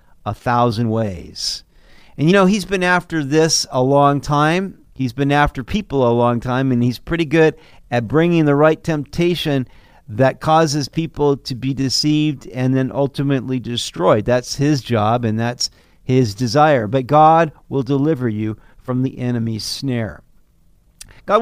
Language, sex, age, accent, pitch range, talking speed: English, male, 50-69, American, 125-180 Hz, 155 wpm